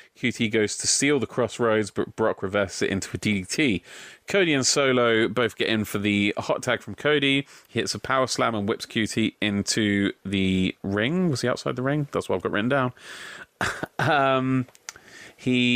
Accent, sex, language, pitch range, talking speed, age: British, male, English, 100-130 Hz, 185 wpm, 30-49